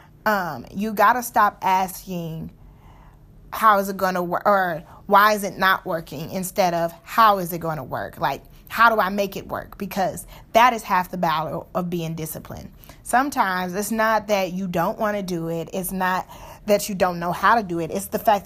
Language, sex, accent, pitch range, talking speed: English, female, American, 180-220 Hz, 210 wpm